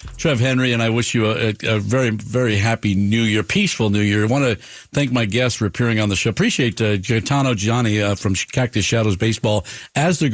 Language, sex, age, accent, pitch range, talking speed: English, male, 50-69, American, 105-125 Hz, 220 wpm